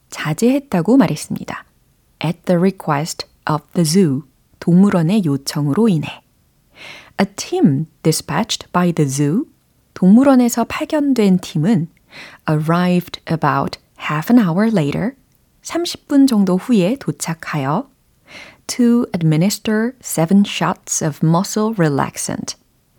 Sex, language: female, Korean